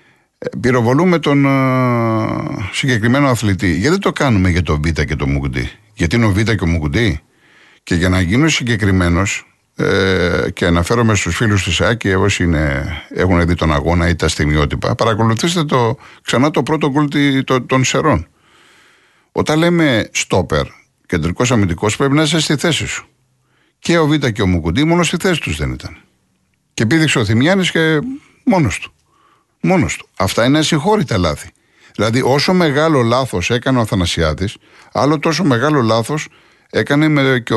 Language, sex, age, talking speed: Greek, male, 50-69, 150 wpm